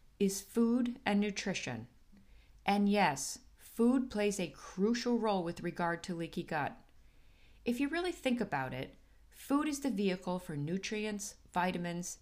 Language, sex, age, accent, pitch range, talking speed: English, female, 40-59, American, 170-225 Hz, 140 wpm